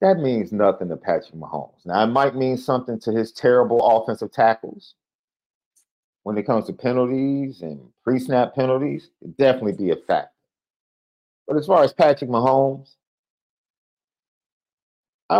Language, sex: English, male